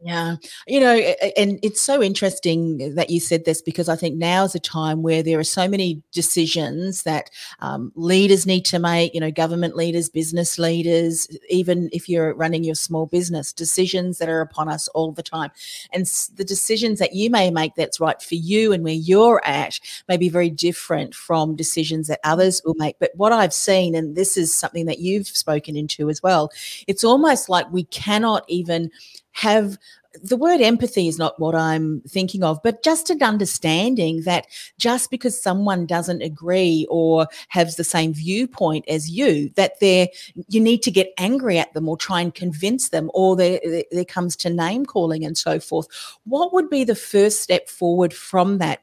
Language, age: English, 40-59